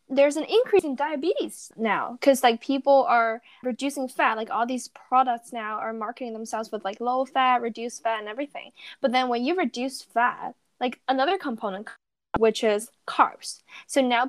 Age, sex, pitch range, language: 10-29, female, 215-255 Hz, Chinese